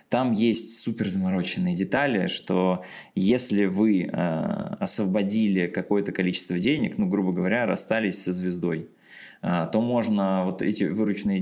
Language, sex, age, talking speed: Russian, male, 20-39, 125 wpm